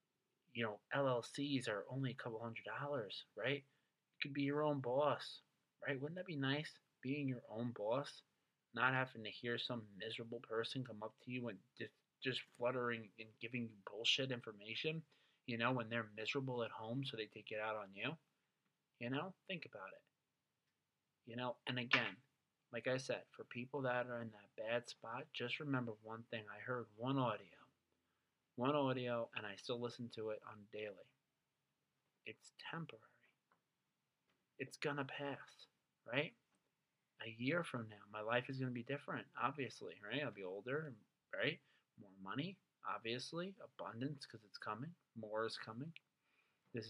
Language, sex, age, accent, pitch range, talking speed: English, male, 30-49, American, 110-140 Hz, 170 wpm